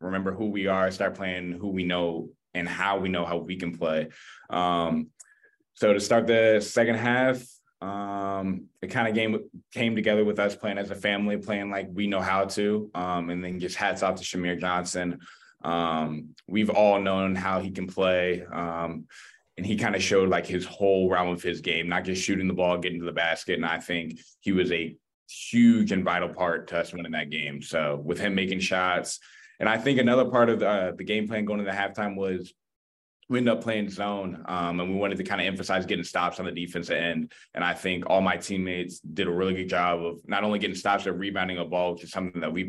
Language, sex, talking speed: English, male, 230 wpm